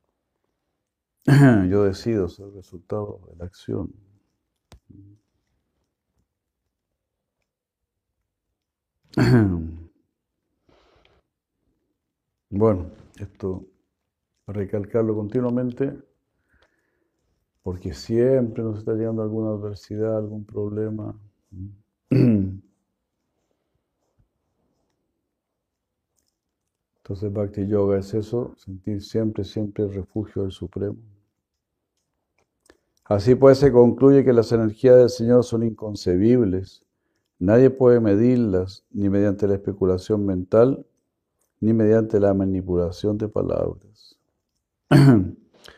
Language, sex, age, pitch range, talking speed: Spanish, male, 60-79, 95-110 Hz, 75 wpm